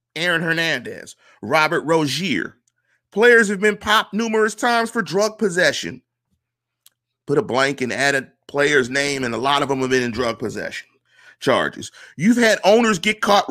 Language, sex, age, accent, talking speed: English, male, 40-59, American, 165 wpm